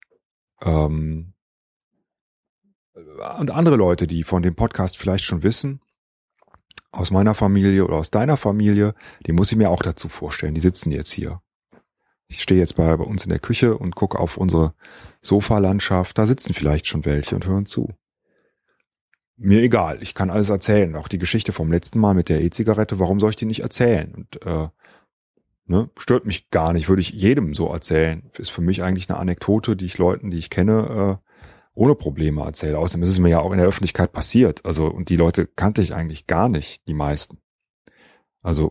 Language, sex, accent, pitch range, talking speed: German, male, German, 85-110 Hz, 185 wpm